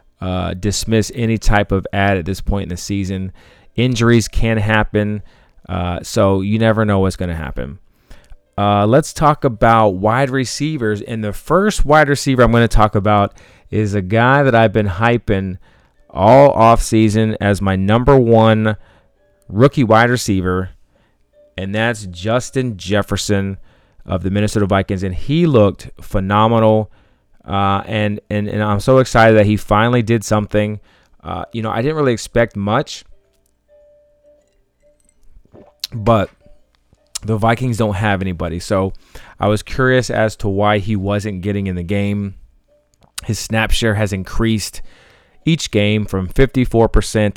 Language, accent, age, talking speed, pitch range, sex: English, American, 30-49, 145 wpm, 100-115 Hz, male